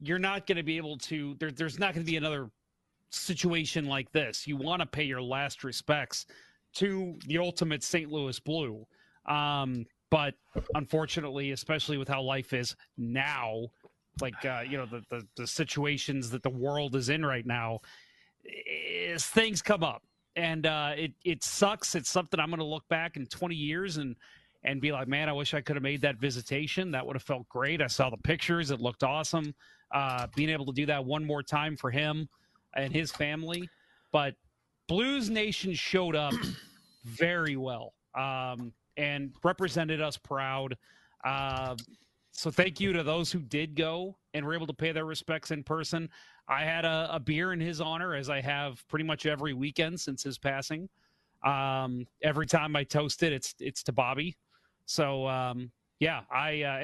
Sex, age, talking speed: male, 30-49, 185 wpm